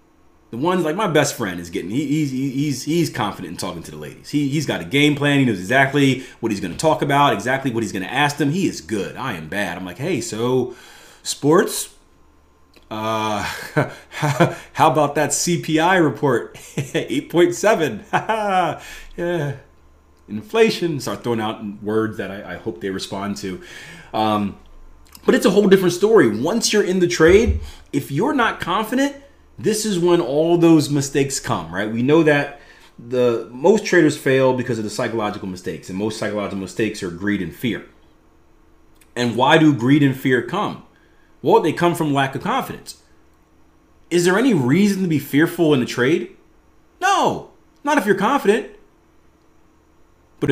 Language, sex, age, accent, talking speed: English, male, 30-49, American, 170 wpm